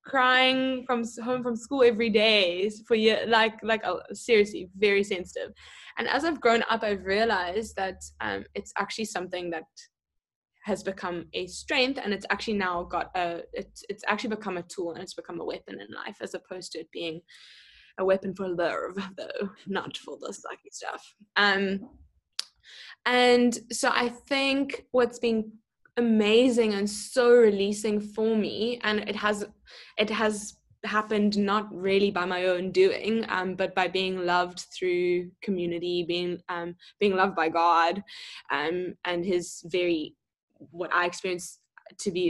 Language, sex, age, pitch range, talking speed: English, female, 10-29, 180-225 Hz, 160 wpm